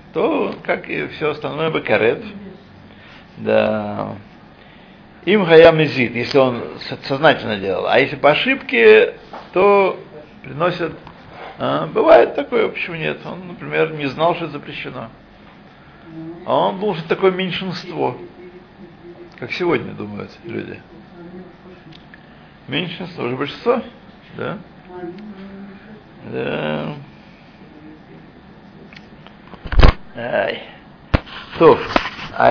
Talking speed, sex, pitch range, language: 85 wpm, male, 140-190 Hz, Russian